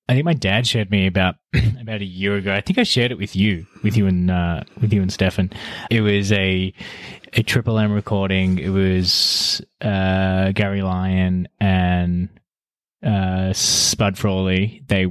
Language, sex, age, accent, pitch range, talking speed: English, male, 20-39, Australian, 95-110 Hz, 170 wpm